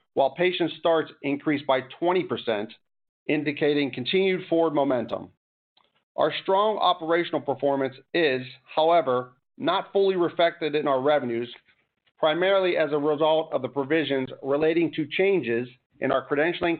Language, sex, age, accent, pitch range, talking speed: English, male, 40-59, American, 135-165 Hz, 125 wpm